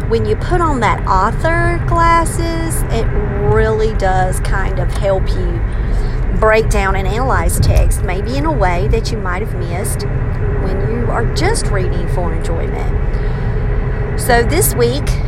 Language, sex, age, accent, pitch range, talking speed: English, female, 40-59, American, 110-130 Hz, 150 wpm